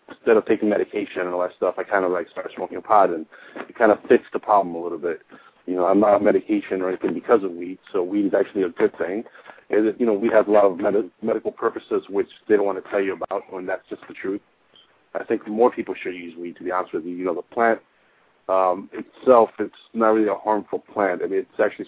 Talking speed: 265 wpm